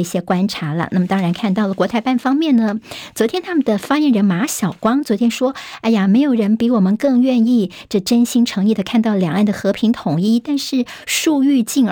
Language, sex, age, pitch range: Chinese, male, 50-69, 180-235 Hz